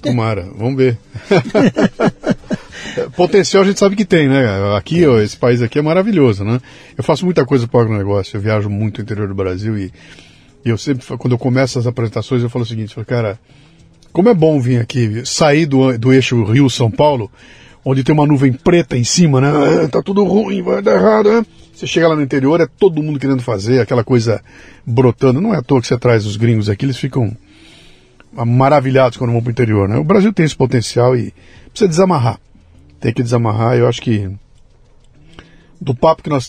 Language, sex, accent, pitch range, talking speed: Portuguese, male, Brazilian, 115-145 Hz, 200 wpm